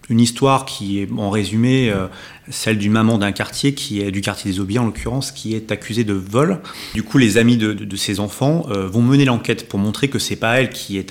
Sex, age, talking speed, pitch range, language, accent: male, 30-49, 245 wpm, 100-125 Hz, French, French